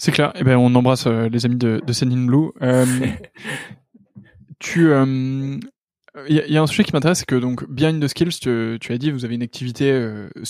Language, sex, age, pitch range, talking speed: French, male, 20-39, 120-140 Hz, 225 wpm